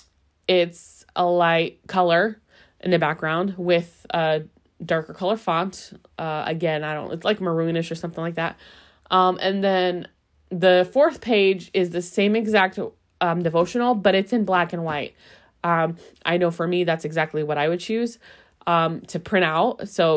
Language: English